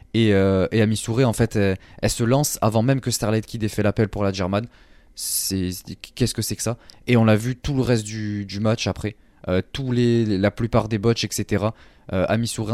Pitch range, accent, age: 100-125 Hz, French, 20-39